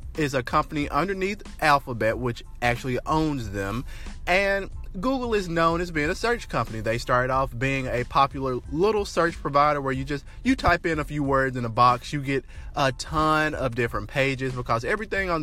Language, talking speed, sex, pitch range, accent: English, 190 wpm, male, 115-160 Hz, American